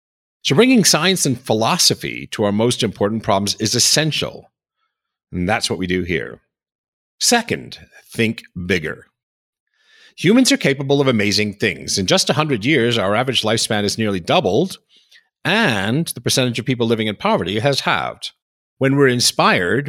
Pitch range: 105-145 Hz